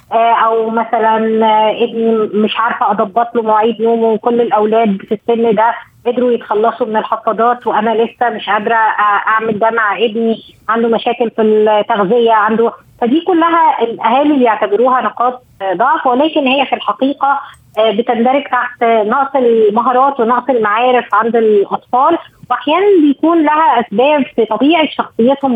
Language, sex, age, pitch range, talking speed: Arabic, female, 20-39, 225-275 Hz, 135 wpm